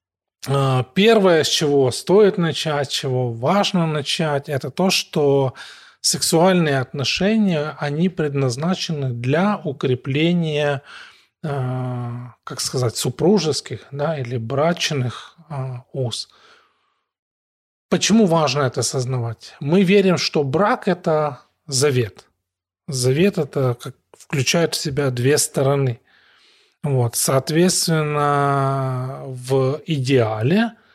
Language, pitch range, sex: Russian, 125-155 Hz, male